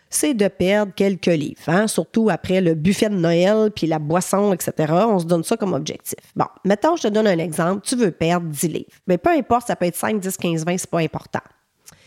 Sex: female